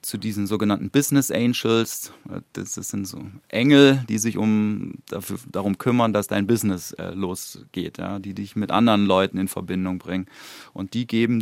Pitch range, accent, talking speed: 100-115 Hz, German, 180 wpm